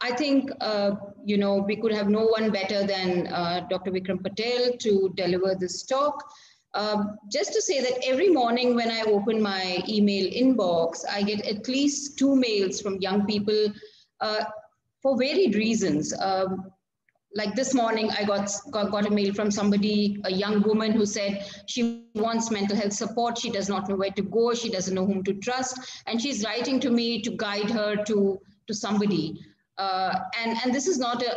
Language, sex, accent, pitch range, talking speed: English, female, Indian, 200-235 Hz, 185 wpm